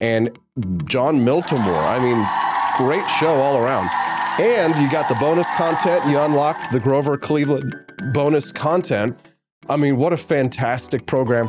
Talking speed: 145 wpm